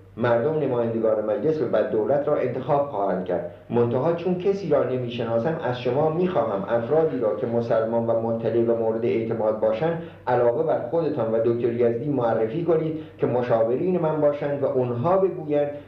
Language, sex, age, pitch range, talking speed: Persian, male, 60-79, 115-155 Hz, 155 wpm